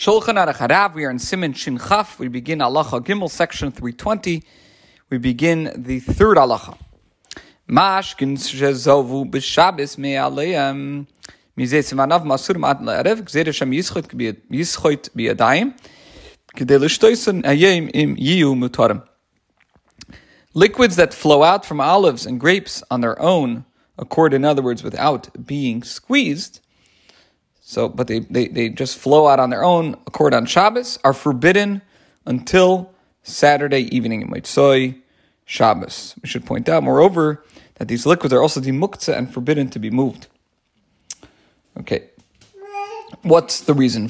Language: English